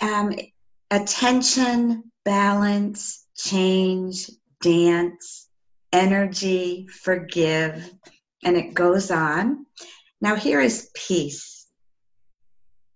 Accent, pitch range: American, 170-230 Hz